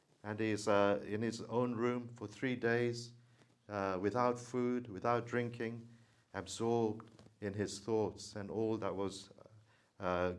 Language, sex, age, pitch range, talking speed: English, male, 50-69, 105-125 Hz, 140 wpm